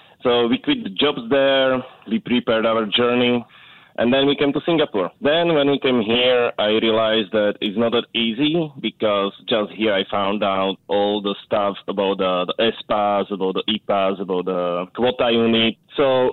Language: English